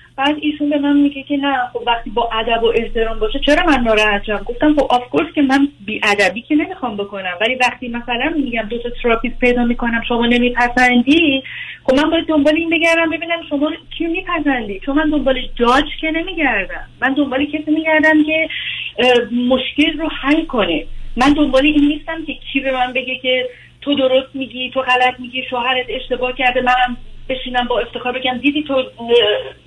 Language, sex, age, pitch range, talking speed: Persian, female, 30-49, 245-315 Hz, 180 wpm